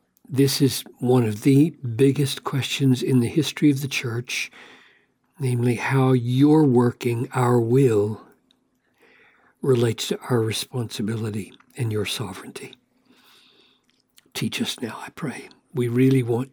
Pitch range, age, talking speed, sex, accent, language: 125-175 Hz, 60-79, 125 wpm, male, American, English